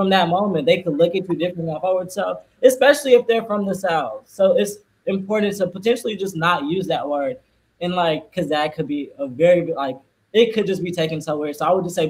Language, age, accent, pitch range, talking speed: English, 20-39, American, 150-190 Hz, 240 wpm